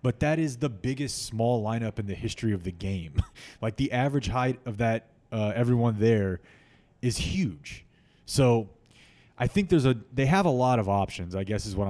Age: 20-39